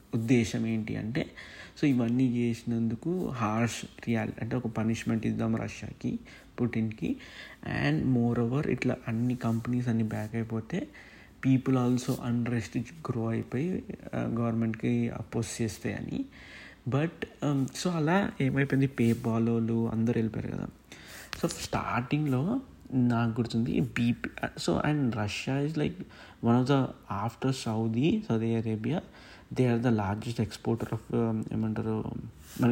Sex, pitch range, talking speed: male, 115-130 Hz, 120 wpm